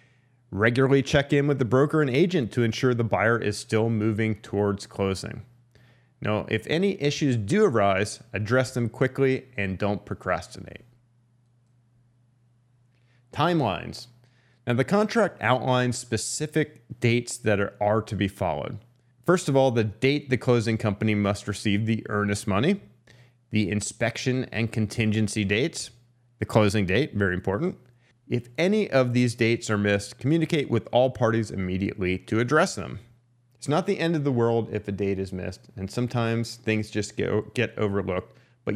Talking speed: 155 wpm